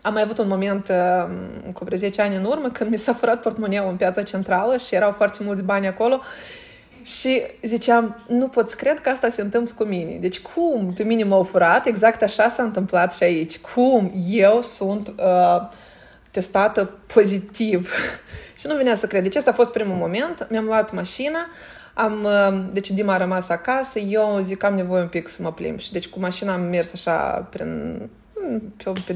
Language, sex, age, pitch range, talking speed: Romanian, female, 20-39, 190-230 Hz, 200 wpm